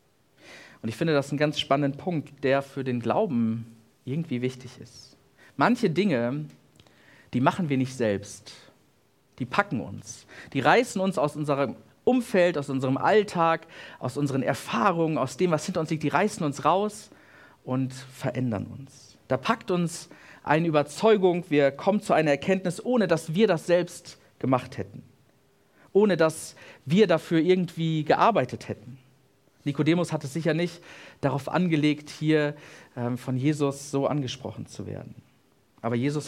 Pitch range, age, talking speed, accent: 130-165 Hz, 50-69, 150 wpm, German